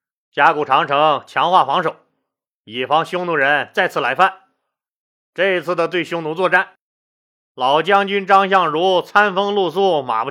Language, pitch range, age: Chinese, 160-200 Hz, 30-49